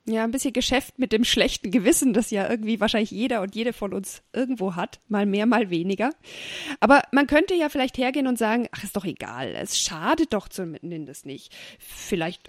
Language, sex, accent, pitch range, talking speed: German, female, German, 190-235 Hz, 195 wpm